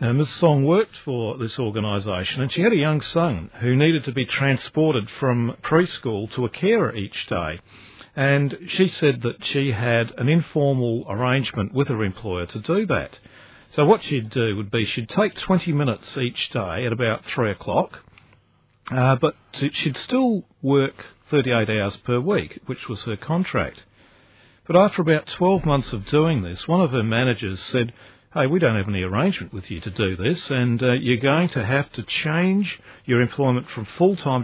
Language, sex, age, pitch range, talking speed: English, male, 50-69, 110-145 Hz, 180 wpm